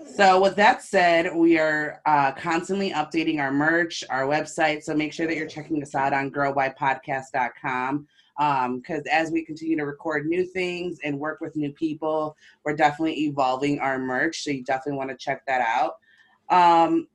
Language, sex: English, female